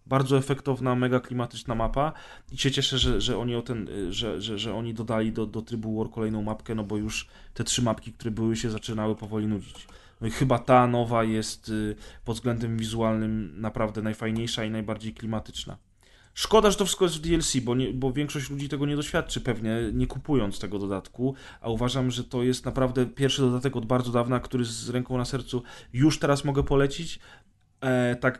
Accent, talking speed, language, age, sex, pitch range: native, 190 wpm, Polish, 20-39, male, 110-125 Hz